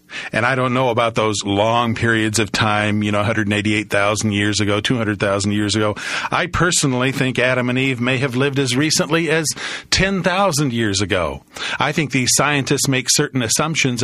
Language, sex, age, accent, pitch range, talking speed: English, male, 50-69, American, 120-165 Hz, 170 wpm